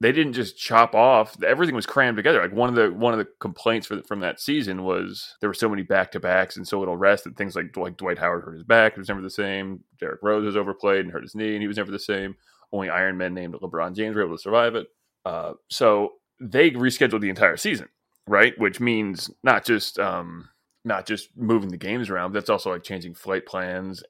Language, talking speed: English, 245 wpm